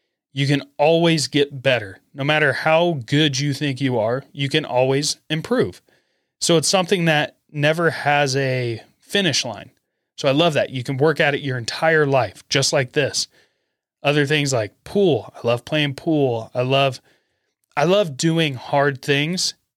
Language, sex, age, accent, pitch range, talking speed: English, male, 30-49, American, 135-155 Hz, 170 wpm